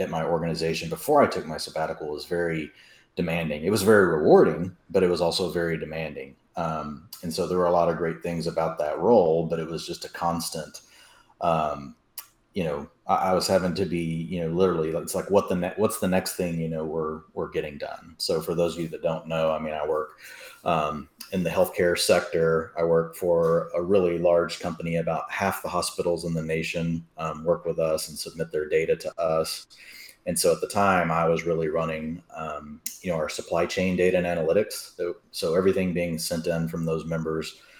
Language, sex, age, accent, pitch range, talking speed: English, male, 30-49, American, 80-90 Hz, 215 wpm